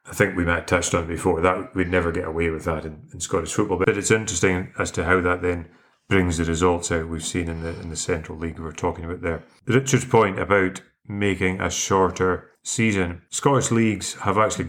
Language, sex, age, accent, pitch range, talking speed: English, male, 30-49, British, 90-110 Hz, 215 wpm